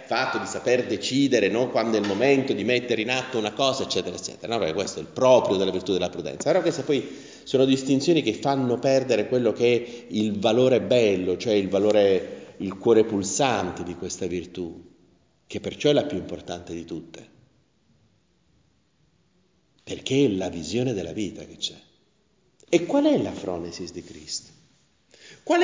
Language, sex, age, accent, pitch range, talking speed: Italian, male, 40-59, native, 105-175 Hz, 175 wpm